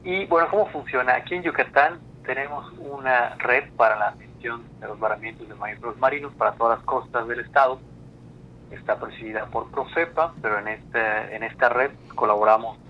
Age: 30-49